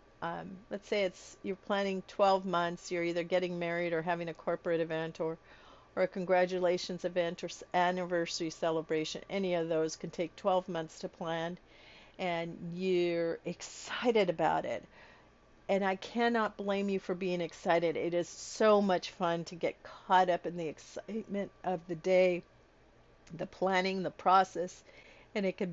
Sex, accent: female, American